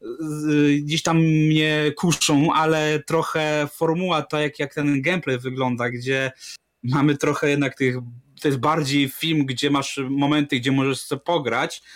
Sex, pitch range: male, 130-165 Hz